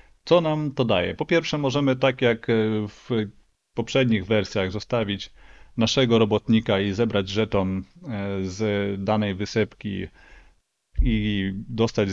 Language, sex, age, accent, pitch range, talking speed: Polish, male, 30-49, native, 100-125 Hz, 115 wpm